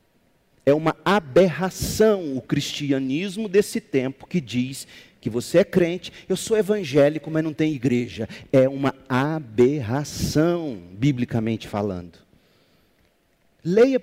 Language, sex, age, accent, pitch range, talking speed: Portuguese, male, 40-59, Brazilian, 125-170 Hz, 110 wpm